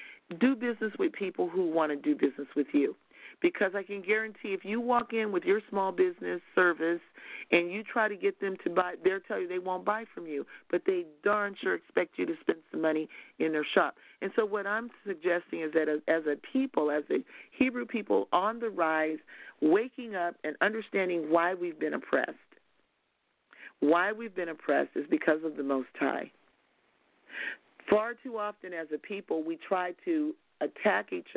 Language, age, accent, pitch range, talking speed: English, 40-59, American, 155-215 Hz, 190 wpm